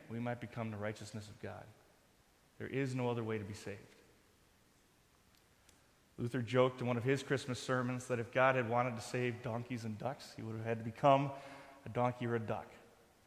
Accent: American